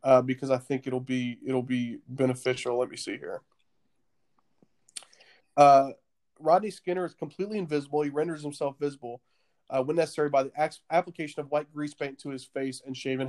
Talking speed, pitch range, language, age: 175 wpm, 135-150 Hz, English, 30-49